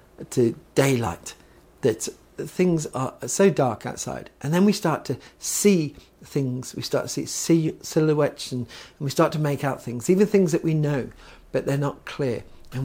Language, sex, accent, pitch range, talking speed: English, male, British, 130-170 Hz, 180 wpm